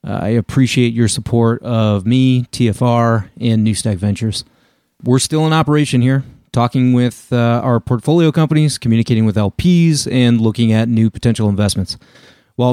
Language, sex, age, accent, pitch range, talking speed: English, male, 30-49, American, 110-130 Hz, 145 wpm